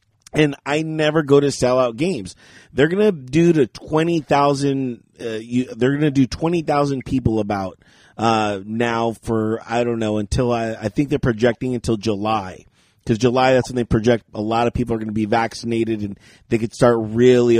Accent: American